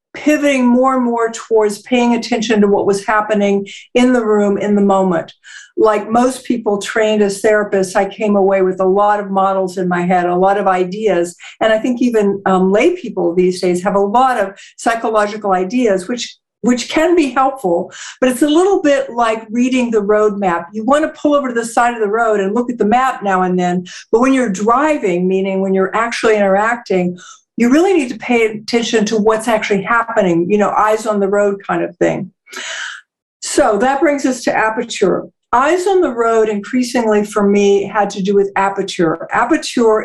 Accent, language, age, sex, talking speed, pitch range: American, English, 50-69, female, 200 wpm, 195-240 Hz